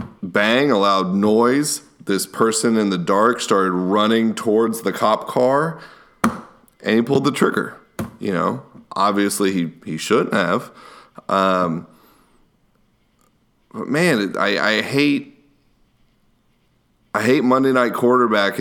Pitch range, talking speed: 95-115 Hz, 125 wpm